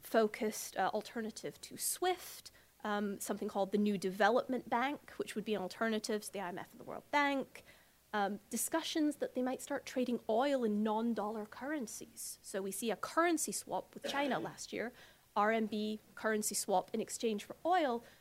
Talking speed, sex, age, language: 170 wpm, female, 30-49, English